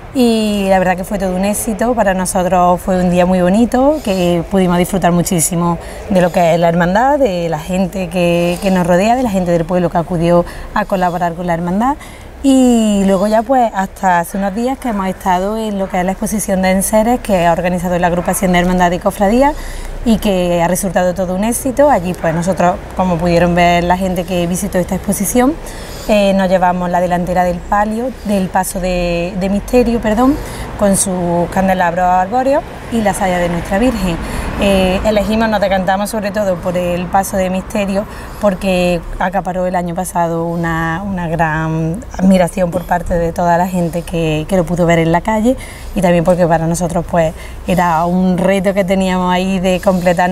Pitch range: 175-200 Hz